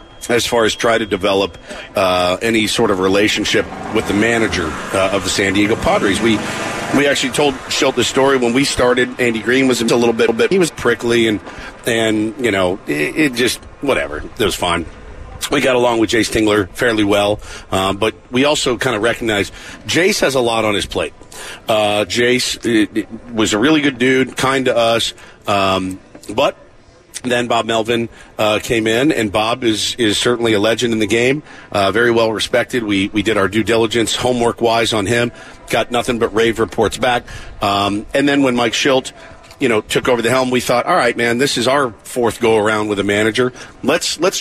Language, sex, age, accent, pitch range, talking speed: English, male, 50-69, American, 100-125 Hz, 205 wpm